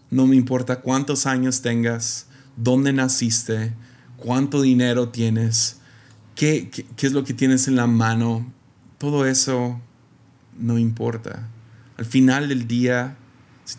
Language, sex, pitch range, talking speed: Spanish, male, 115-130 Hz, 130 wpm